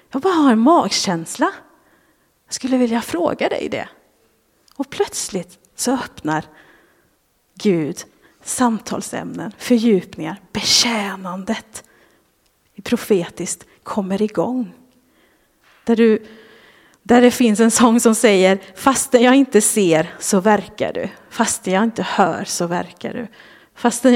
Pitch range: 195-245 Hz